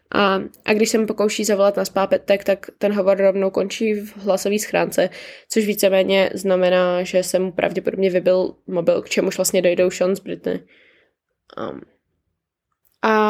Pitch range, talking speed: 190-220 Hz, 160 wpm